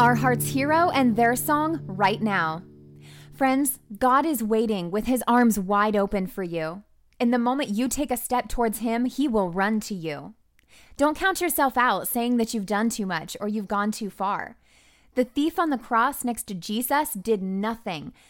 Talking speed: 190 wpm